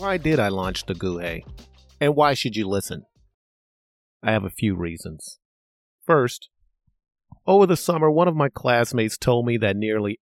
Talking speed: 165 wpm